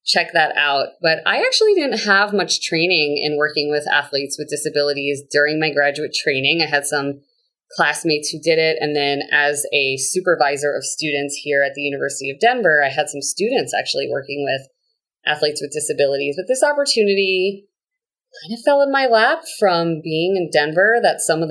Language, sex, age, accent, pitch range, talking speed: English, female, 30-49, American, 145-195 Hz, 185 wpm